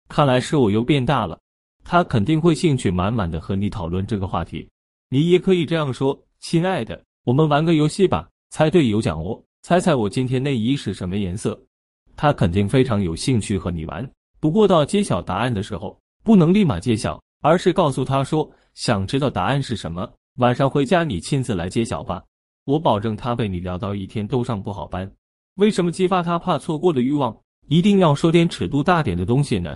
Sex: male